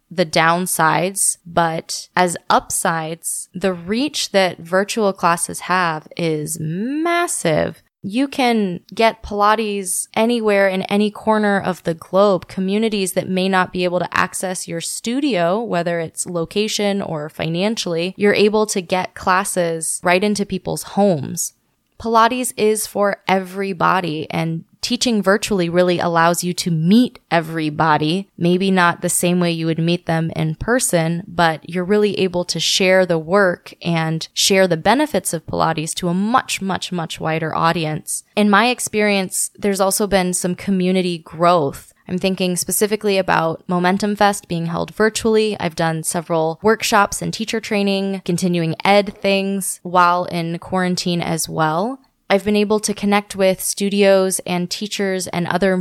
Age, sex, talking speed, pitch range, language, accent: 20-39, female, 145 wpm, 170-205 Hz, English, American